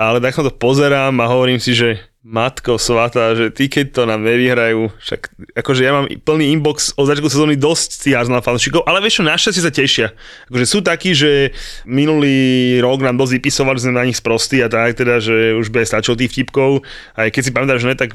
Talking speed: 215 wpm